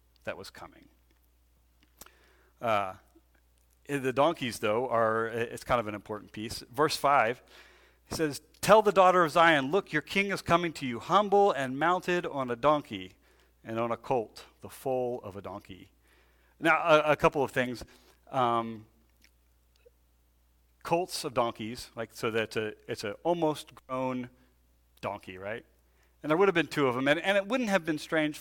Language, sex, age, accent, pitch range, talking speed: English, male, 40-59, American, 105-155 Hz, 165 wpm